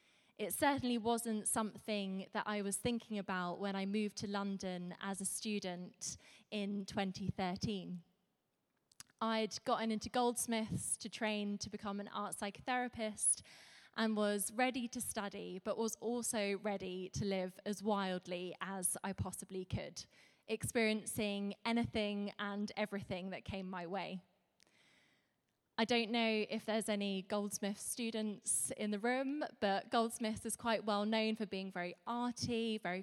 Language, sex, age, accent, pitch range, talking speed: English, female, 20-39, British, 195-225 Hz, 140 wpm